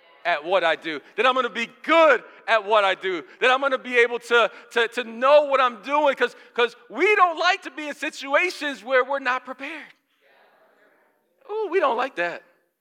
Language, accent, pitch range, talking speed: English, American, 205-300 Hz, 195 wpm